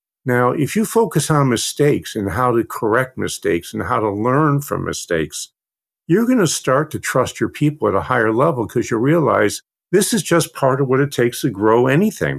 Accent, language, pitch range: American, English, 110-145 Hz